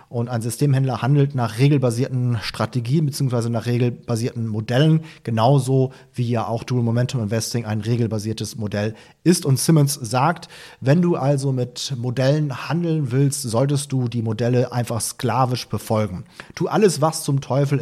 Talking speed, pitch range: 150 wpm, 120-145 Hz